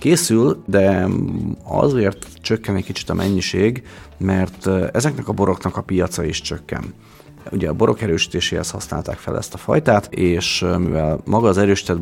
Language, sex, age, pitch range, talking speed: Hungarian, male, 40-59, 90-105 Hz, 150 wpm